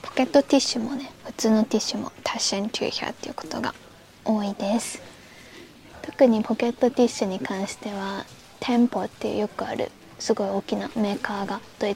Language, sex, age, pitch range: Japanese, female, 20-39, 210-255 Hz